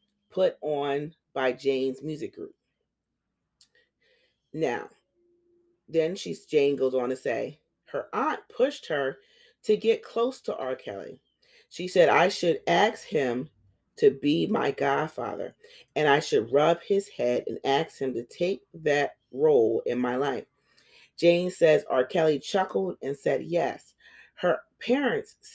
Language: English